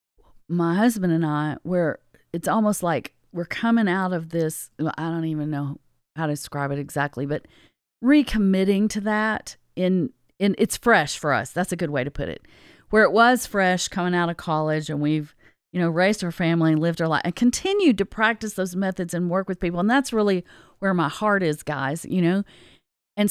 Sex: female